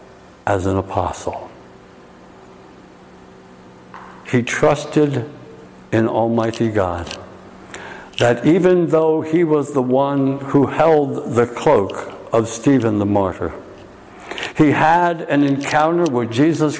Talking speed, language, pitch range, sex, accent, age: 105 wpm, English, 100-130 Hz, male, American, 60-79